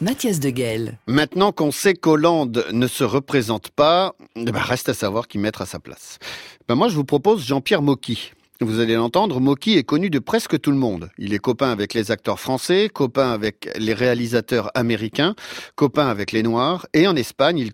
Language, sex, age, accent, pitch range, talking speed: French, male, 50-69, French, 110-140 Hz, 190 wpm